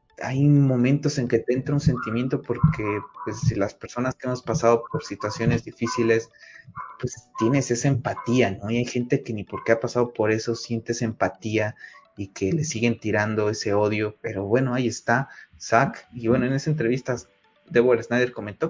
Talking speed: 185 wpm